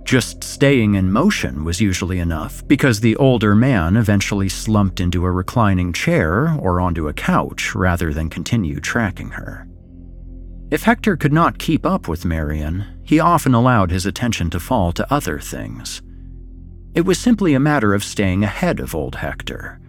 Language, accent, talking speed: English, American, 165 wpm